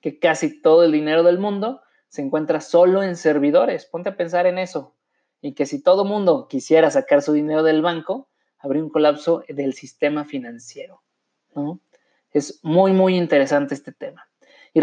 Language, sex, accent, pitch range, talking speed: Spanish, male, Mexican, 150-190 Hz, 165 wpm